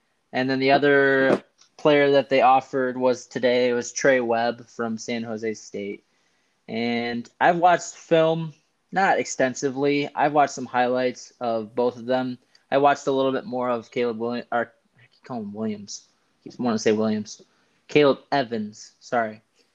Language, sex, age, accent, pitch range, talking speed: English, male, 20-39, American, 115-140 Hz, 165 wpm